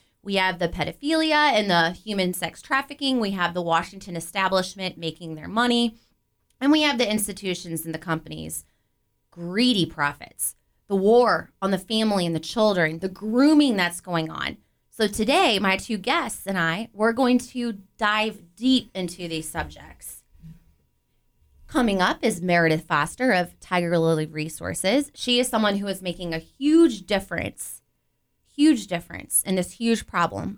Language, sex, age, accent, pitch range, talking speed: English, female, 20-39, American, 165-225 Hz, 155 wpm